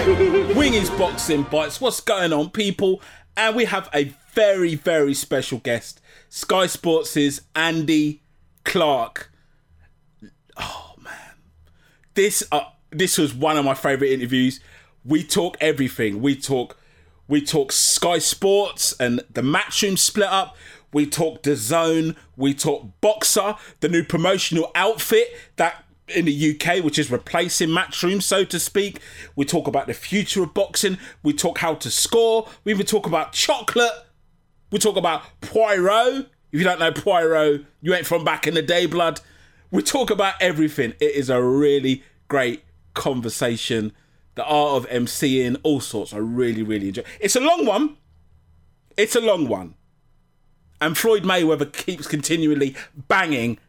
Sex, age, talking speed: male, 30-49, 150 wpm